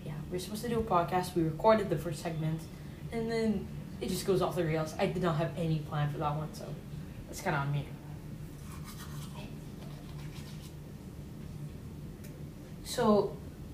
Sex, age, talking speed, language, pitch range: female, 20-39, 155 wpm, English, 155-185 Hz